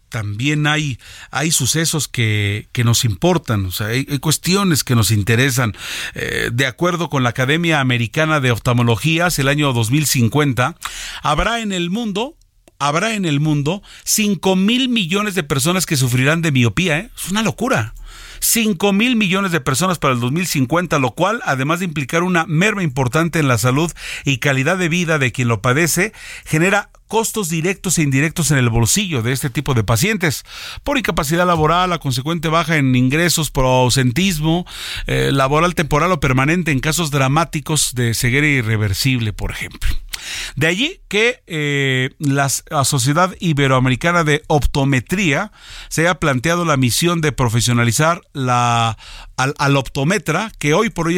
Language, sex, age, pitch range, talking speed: Spanish, male, 40-59, 130-175 Hz, 160 wpm